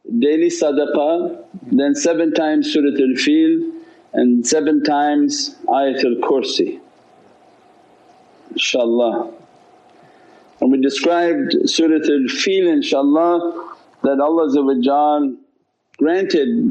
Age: 50-69